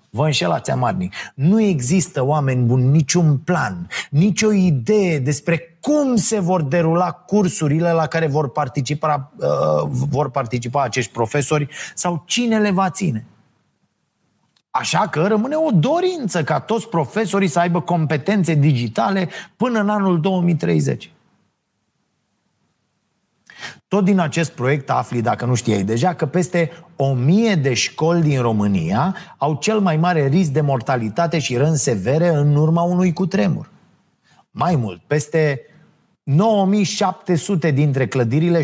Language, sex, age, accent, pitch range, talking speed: Romanian, male, 30-49, native, 140-180 Hz, 130 wpm